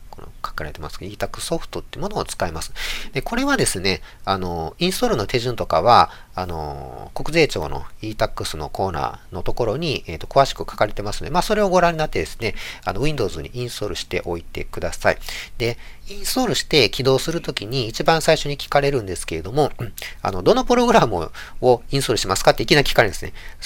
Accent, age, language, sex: native, 40-59, Japanese, male